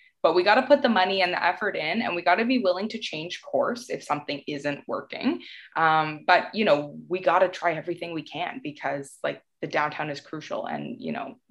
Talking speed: 230 wpm